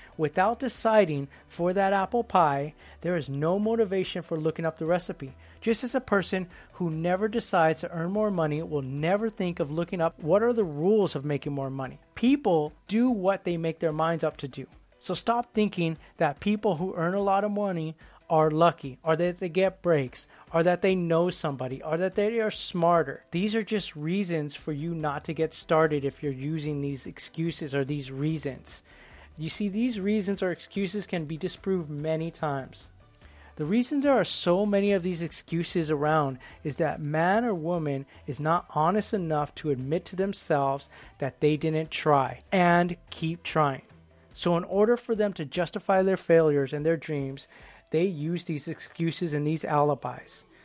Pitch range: 150-190 Hz